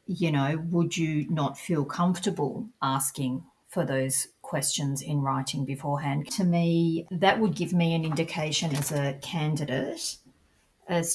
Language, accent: English, Australian